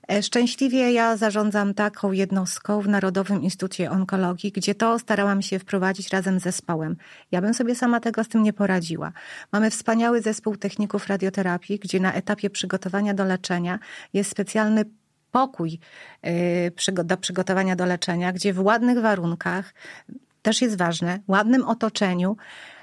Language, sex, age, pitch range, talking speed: Polish, female, 30-49, 190-230 Hz, 140 wpm